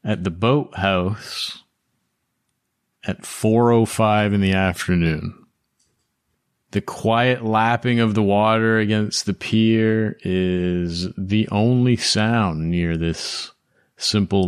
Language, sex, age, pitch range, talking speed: English, male, 30-49, 95-115 Hz, 100 wpm